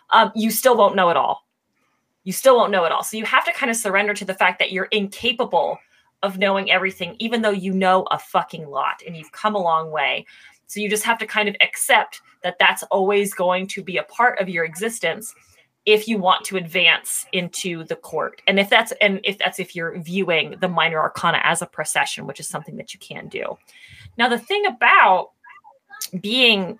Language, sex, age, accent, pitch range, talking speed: English, female, 30-49, American, 185-235 Hz, 215 wpm